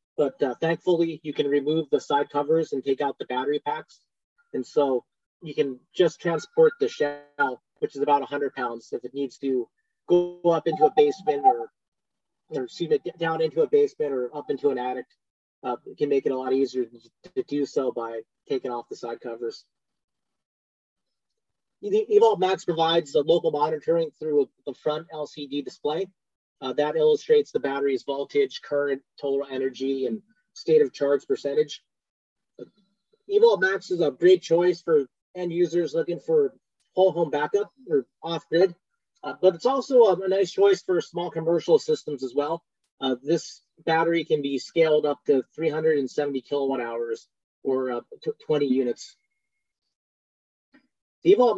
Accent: American